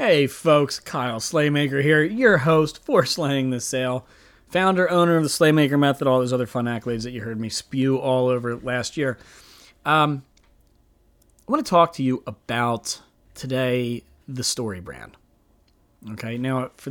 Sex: male